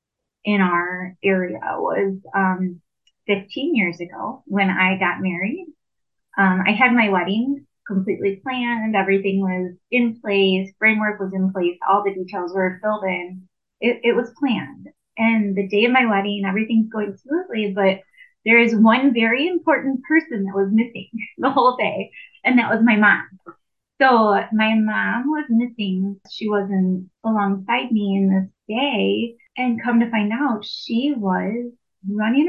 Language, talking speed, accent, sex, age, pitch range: English, 155 wpm, American, female, 20-39, 195-245 Hz